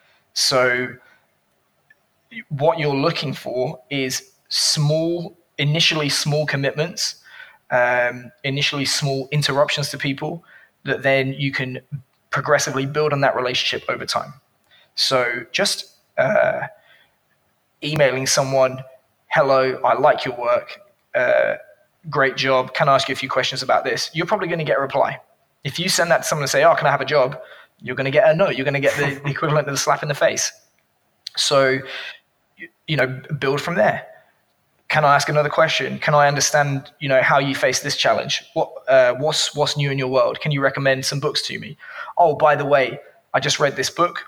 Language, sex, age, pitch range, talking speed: English, male, 20-39, 135-155 Hz, 180 wpm